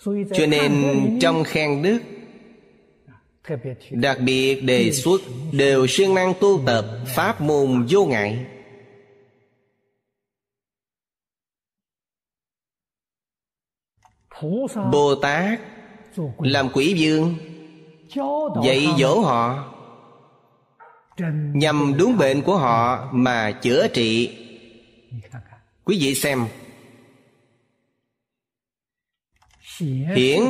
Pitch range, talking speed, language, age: 125-150 Hz, 75 wpm, Vietnamese, 30-49